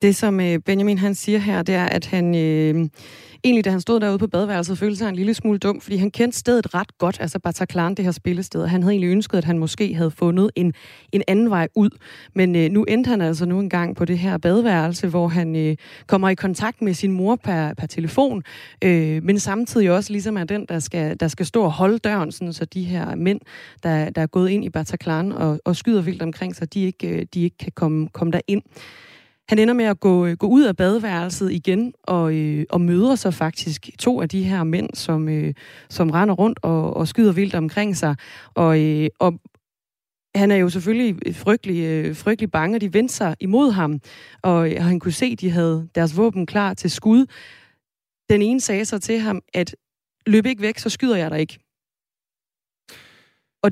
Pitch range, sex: 165-205 Hz, female